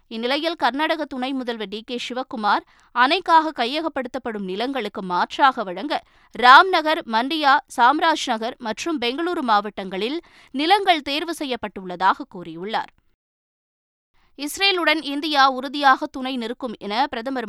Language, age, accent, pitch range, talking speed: Tamil, 20-39, native, 225-300 Hz, 105 wpm